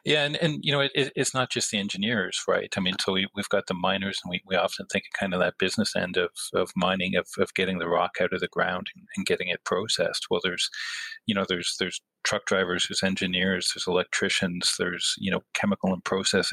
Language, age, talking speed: English, 40-59, 230 wpm